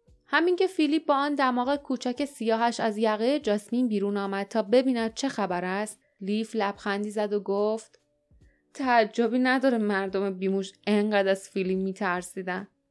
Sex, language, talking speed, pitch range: female, Persian, 145 wpm, 205-250 Hz